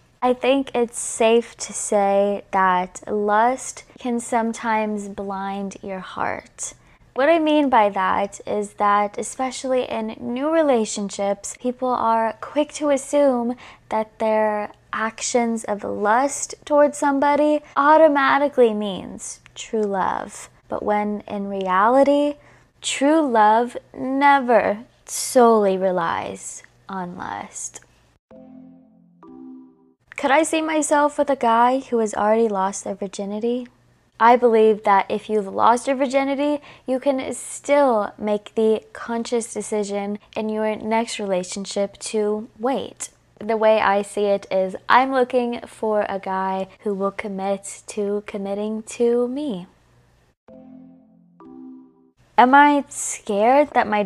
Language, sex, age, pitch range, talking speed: English, female, 20-39, 200-255 Hz, 120 wpm